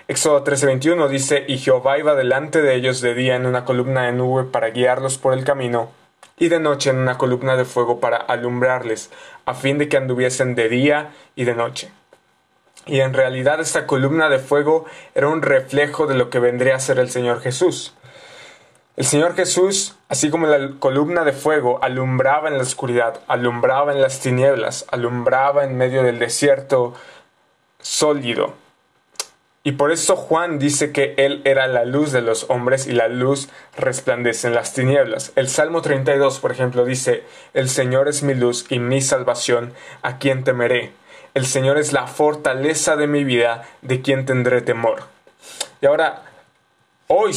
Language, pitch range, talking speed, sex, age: Spanish, 125-145 Hz, 170 wpm, male, 20-39